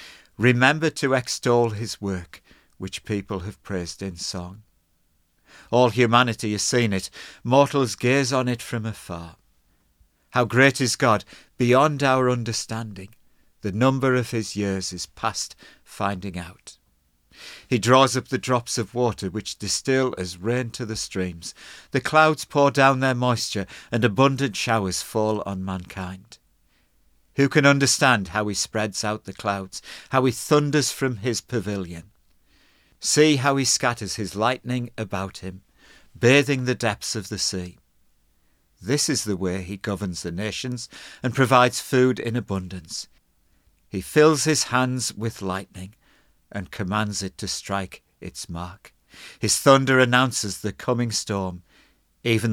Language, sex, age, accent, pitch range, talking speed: English, male, 50-69, British, 95-125 Hz, 145 wpm